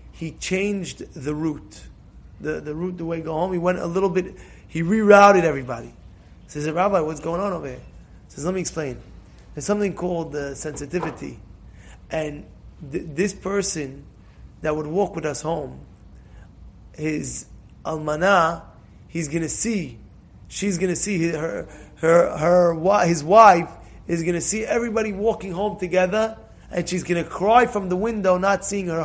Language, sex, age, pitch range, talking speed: English, male, 20-39, 155-205 Hz, 170 wpm